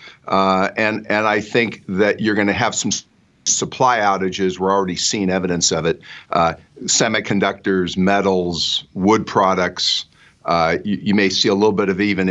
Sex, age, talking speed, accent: male, 50-69, 170 wpm, American